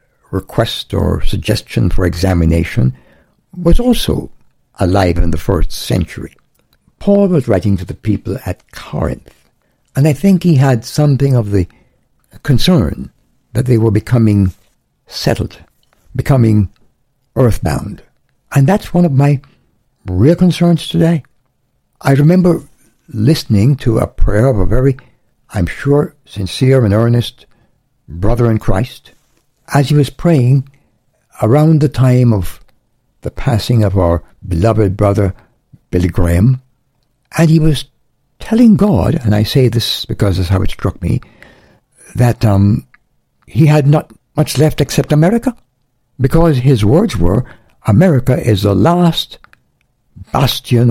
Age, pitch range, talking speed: 60-79, 100-145 Hz, 130 wpm